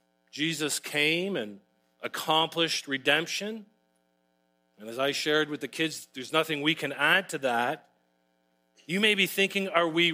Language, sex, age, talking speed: English, male, 40-59, 150 wpm